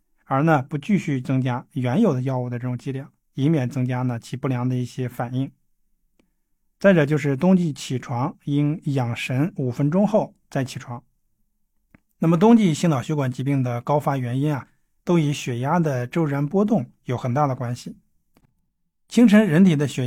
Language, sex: Chinese, male